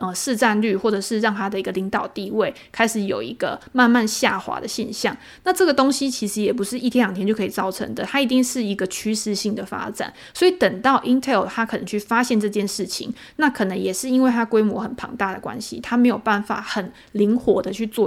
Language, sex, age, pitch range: Chinese, female, 20-39, 200-245 Hz